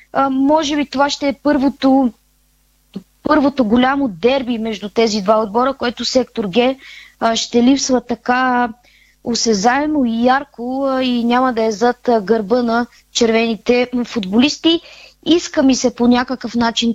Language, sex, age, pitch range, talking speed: Bulgarian, female, 20-39, 235-275 Hz, 130 wpm